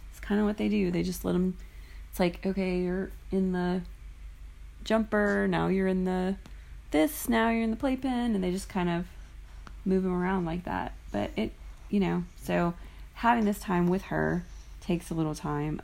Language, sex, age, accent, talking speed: English, female, 30-49, American, 190 wpm